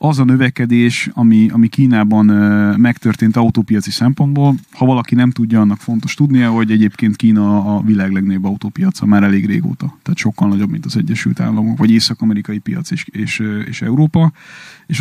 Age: 30-49